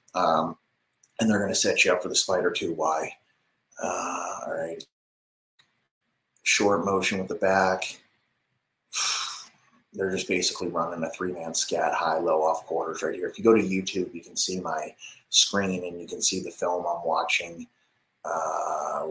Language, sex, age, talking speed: English, male, 30-49, 170 wpm